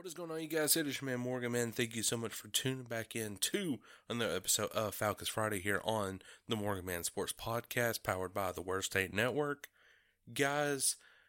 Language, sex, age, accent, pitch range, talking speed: English, male, 30-49, American, 100-135 Hz, 215 wpm